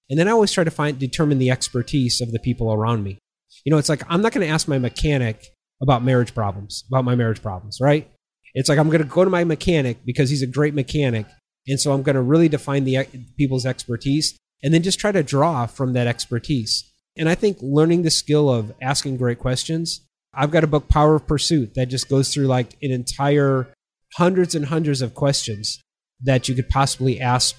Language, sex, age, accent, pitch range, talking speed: English, male, 30-49, American, 130-155 Hz, 220 wpm